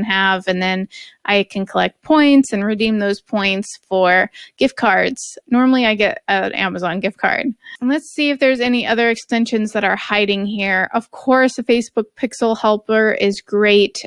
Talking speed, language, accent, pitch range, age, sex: 175 wpm, English, American, 195-250 Hz, 20-39, female